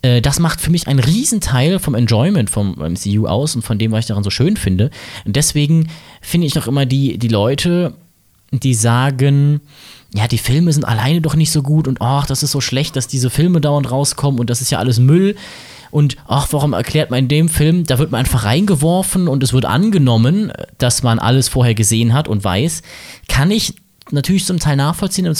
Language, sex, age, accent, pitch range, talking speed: German, male, 20-39, German, 120-160 Hz, 210 wpm